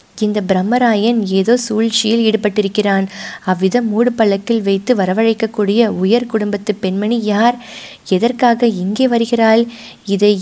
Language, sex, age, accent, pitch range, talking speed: Tamil, female, 20-39, native, 195-235 Hz, 105 wpm